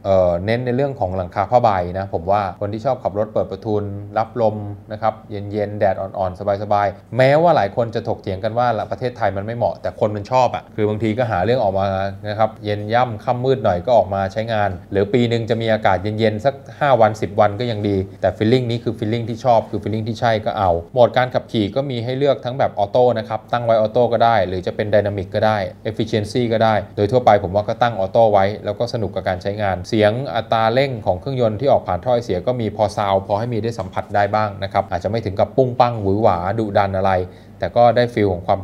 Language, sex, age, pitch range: Thai, male, 20-39, 100-120 Hz